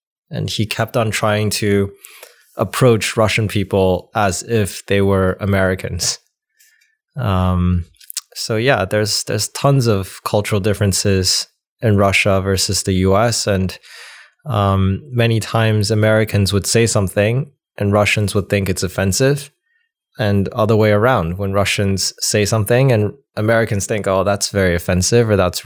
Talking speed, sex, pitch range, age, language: 140 wpm, male, 95-115 Hz, 20-39, Russian